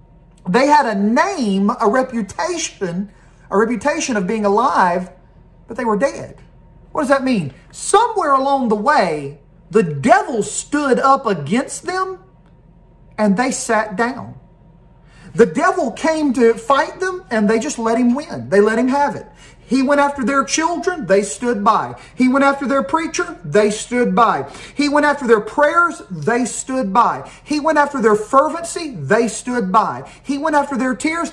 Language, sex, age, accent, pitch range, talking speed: English, male, 40-59, American, 175-285 Hz, 165 wpm